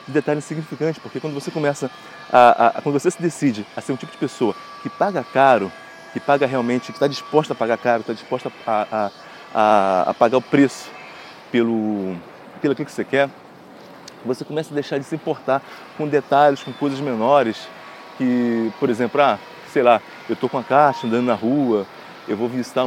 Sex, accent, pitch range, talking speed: male, Brazilian, 120-160 Hz, 195 wpm